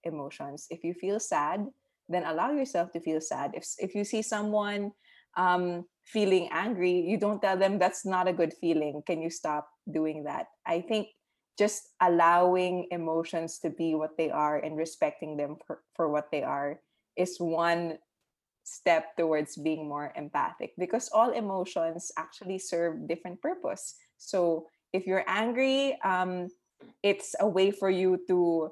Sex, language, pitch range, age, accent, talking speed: female, English, 165-195 Hz, 20-39, Filipino, 160 wpm